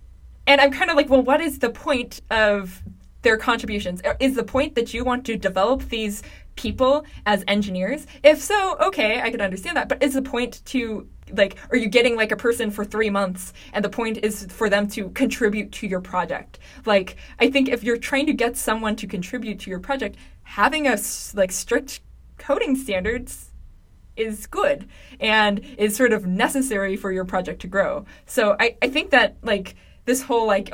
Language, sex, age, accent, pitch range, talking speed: English, female, 20-39, American, 195-250 Hz, 195 wpm